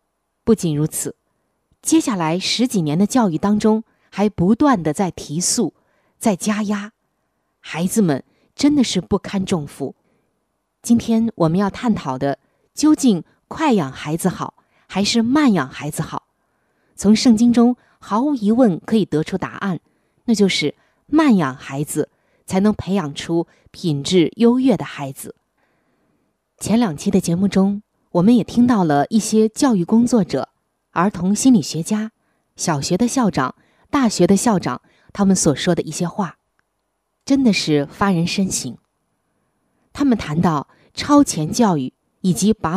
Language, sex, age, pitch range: Chinese, female, 20-39, 165-230 Hz